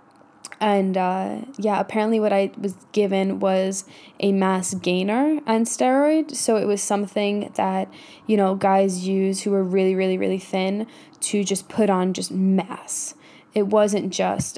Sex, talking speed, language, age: female, 155 wpm, English, 10-29